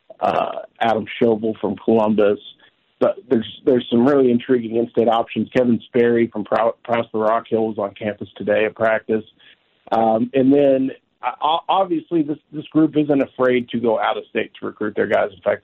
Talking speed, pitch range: 175 wpm, 110-130 Hz